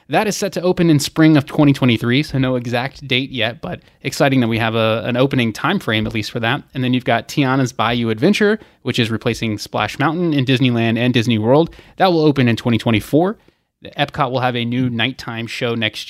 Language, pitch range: English, 120-150 Hz